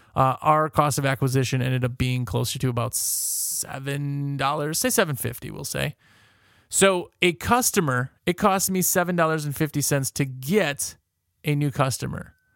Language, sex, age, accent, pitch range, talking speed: English, male, 30-49, American, 125-170 Hz, 135 wpm